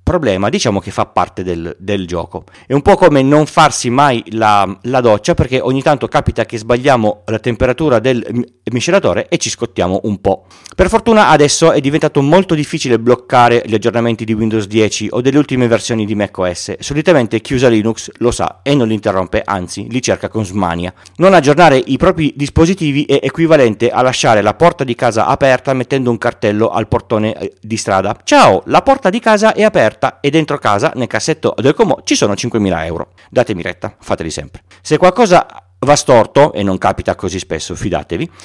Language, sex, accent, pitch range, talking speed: Italian, male, native, 105-145 Hz, 190 wpm